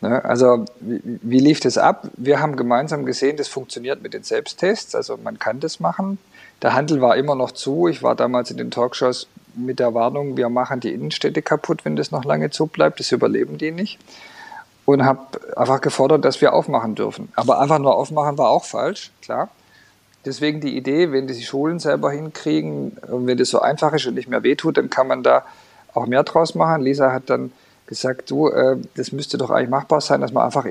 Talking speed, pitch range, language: 205 wpm, 125-160 Hz, English